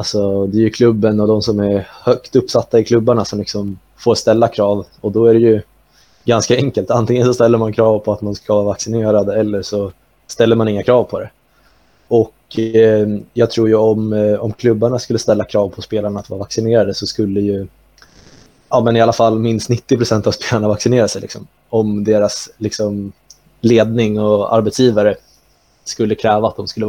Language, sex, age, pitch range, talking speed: Swedish, male, 20-39, 105-120 Hz, 195 wpm